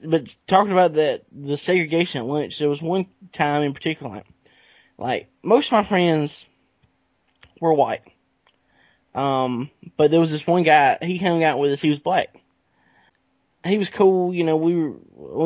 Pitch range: 140-180 Hz